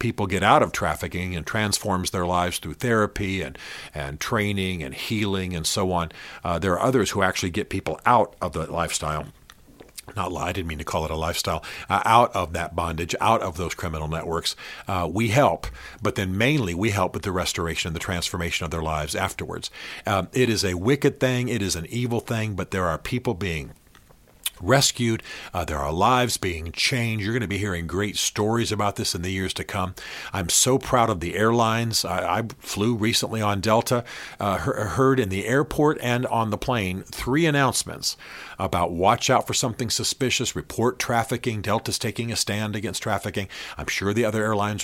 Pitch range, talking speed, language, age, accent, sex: 90-115 Hz, 200 wpm, English, 50-69, American, male